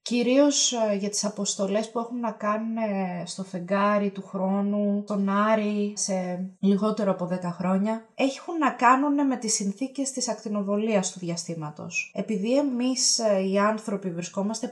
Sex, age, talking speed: female, 20-39, 140 wpm